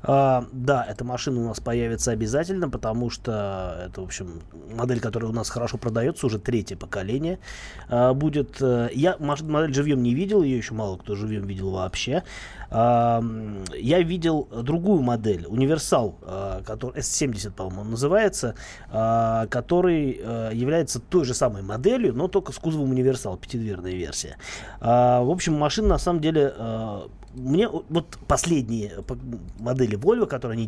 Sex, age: male, 20-39